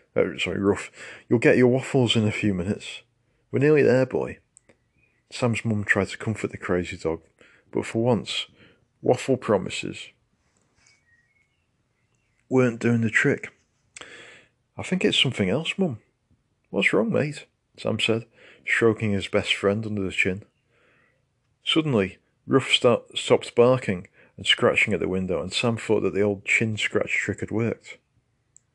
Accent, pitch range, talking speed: British, 100-125 Hz, 145 wpm